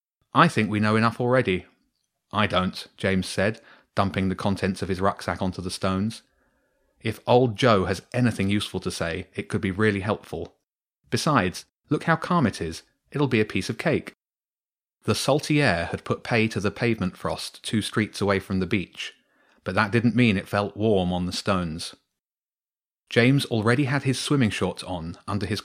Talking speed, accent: 185 wpm, British